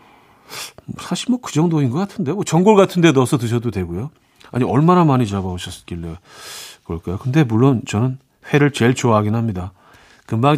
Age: 40-59